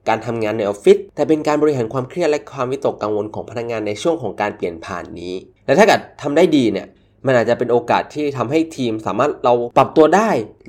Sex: male